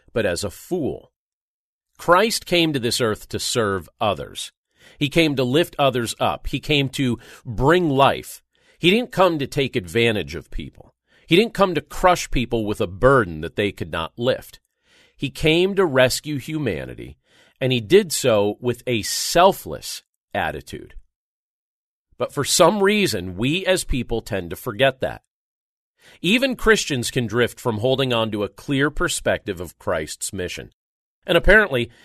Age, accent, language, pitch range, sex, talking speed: 40-59, American, English, 115-160 Hz, male, 160 wpm